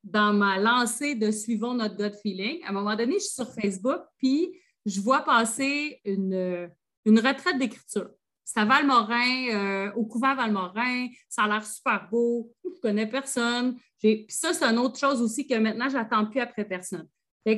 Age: 30-49